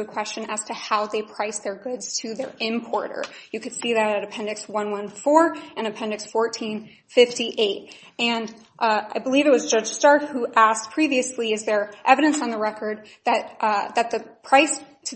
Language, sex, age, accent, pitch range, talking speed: English, female, 20-39, American, 220-260 Hz, 180 wpm